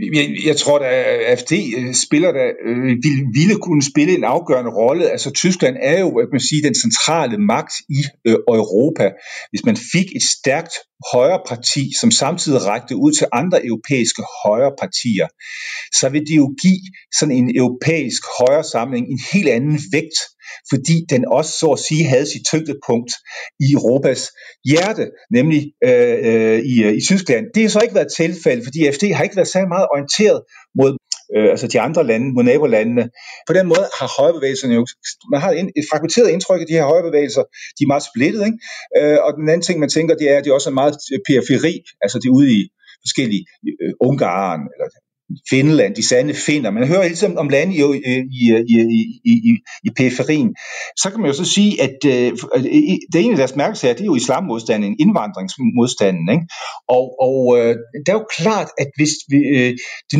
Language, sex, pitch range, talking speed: Danish, male, 125-185 Hz, 180 wpm